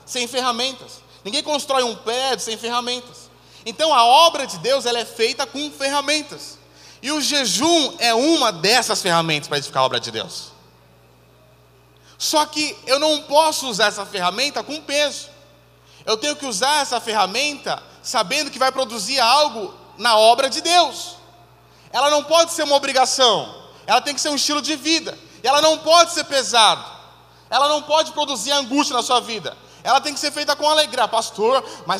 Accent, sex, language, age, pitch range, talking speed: Brazilian, male, Portuguese, 20-39, 175-290 Hz, 175 wpm